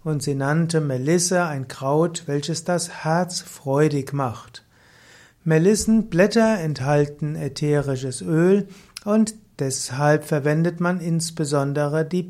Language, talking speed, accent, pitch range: German, 100 wpm, German, 145-170 Hz